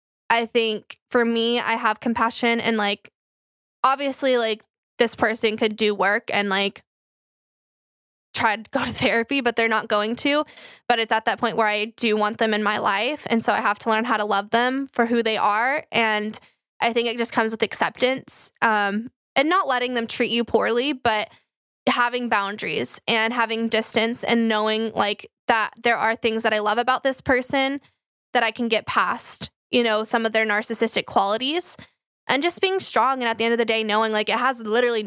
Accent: American